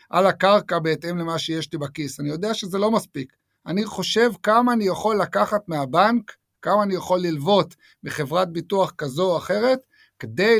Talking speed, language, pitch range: 165 wpm, Hebrew, 165-210 Hz